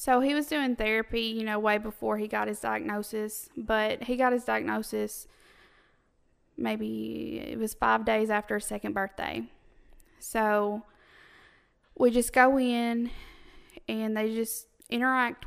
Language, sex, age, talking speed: English, female, 20-39, 140 wpm